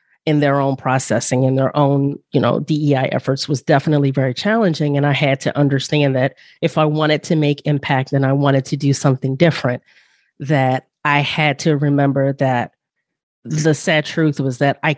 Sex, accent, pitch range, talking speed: female, American, 135-160 Hz, 185 wpm